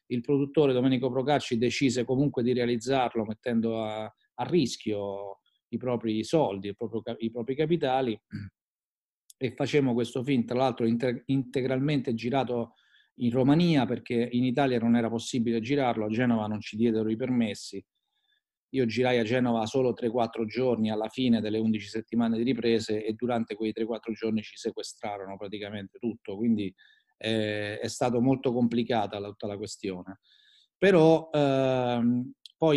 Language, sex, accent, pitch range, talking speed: Italian, male, native, 115-135 Hz, 145 wpm